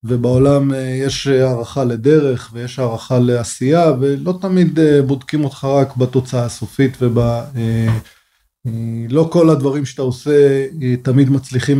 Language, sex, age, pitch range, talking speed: Hebrew, male, 20-39, 120-140 Hz, 110 wpm